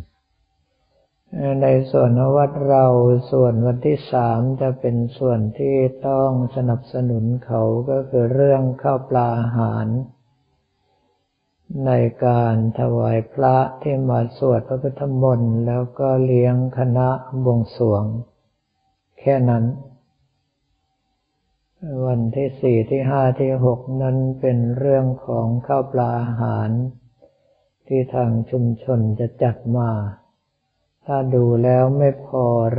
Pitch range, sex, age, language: 120-135 Hz, male, 60-79, Thai